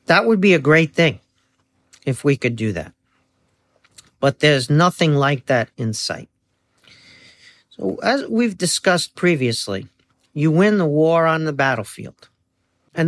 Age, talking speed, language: 50-69, 140 wpm, English